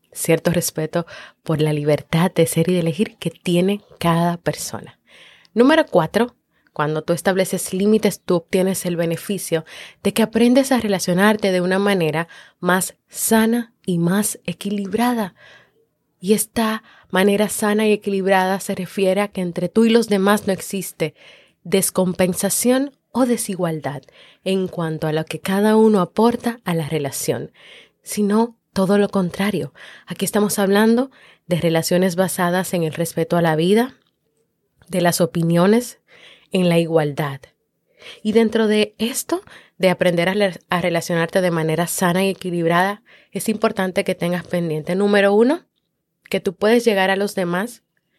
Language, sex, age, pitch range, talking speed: Spanish, female, 20-39, 175-215 Hz, 150 wpm